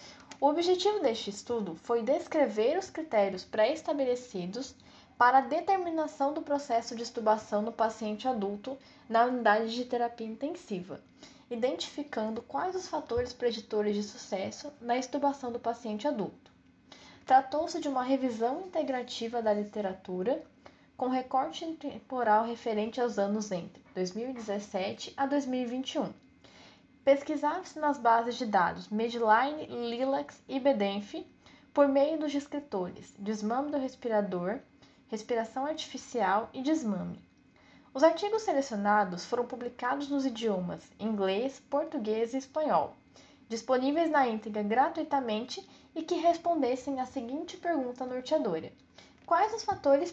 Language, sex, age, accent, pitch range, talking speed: Portuguese, female, 10-29, Brazilian, 225-290 Hz, 115 wpm